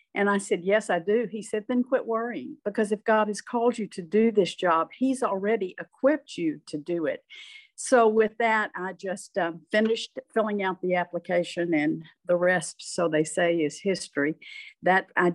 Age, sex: 50-69, female